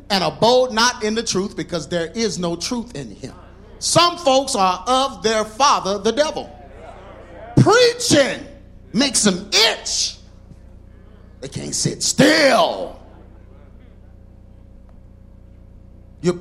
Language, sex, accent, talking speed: English, male, American, 110 wpm